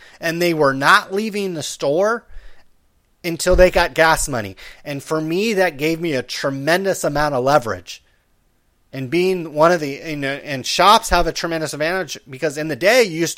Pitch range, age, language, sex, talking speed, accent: 135-175 Hz, 30-49, English, male, 180 wpm, American